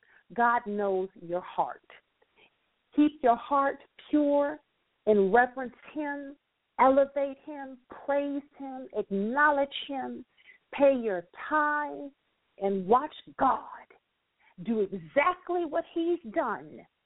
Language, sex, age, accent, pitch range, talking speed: English, female, 50-69, American, 205-285 Hz, 100 wpm